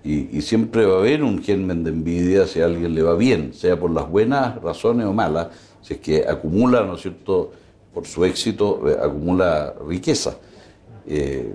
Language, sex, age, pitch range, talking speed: Spanish, male, 60-79, 85-105 Hz, 190 wpm